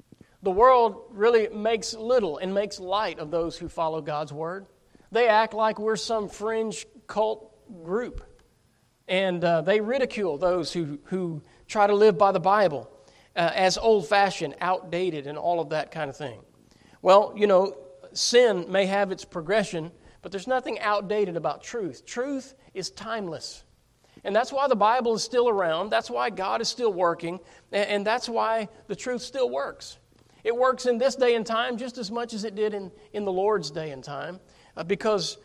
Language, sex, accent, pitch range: English, male, American, 185-230 Hz